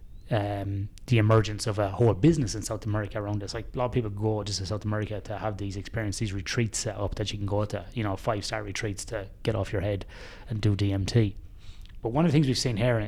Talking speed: 250 wpm